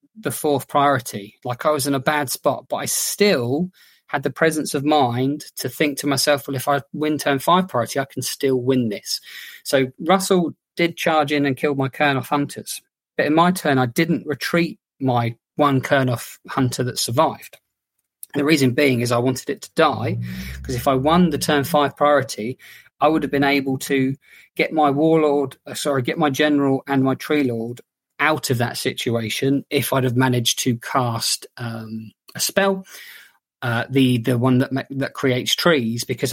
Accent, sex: British, male